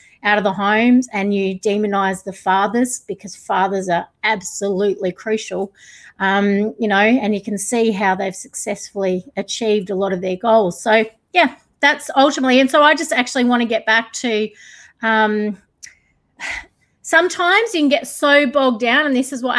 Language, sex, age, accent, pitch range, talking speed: English, female, 30-49, Australian, 200-240 Hz, 170 wpm